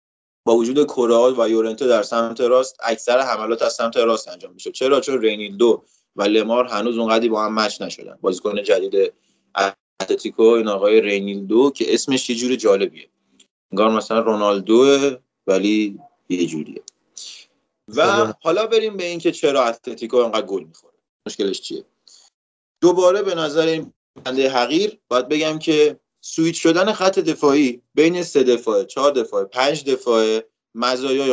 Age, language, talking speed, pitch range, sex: 30-49, Persian, 150 wpm, 120-170 Hz, male